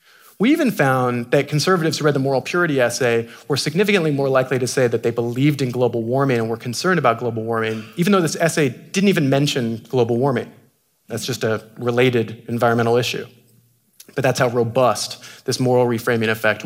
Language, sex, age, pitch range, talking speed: English, male, 30-49, 115-140 Hz, 185 wpm